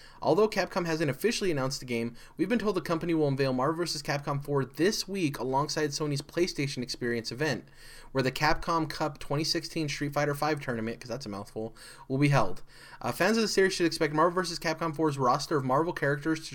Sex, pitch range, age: male, 130-160 Hz, 20-39